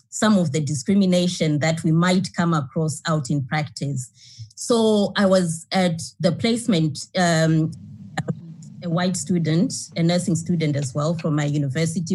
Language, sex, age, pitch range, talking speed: English, female, 20-39, 155-190 Hz, 150 wpm